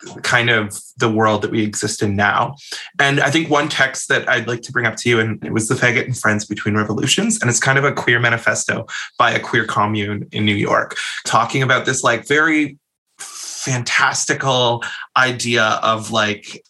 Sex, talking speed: male, 195 wpm